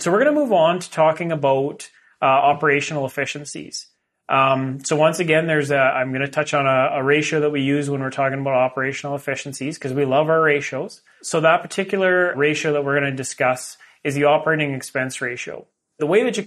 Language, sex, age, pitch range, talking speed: English, male, 30-49, 135-155 Hz, 210 wpm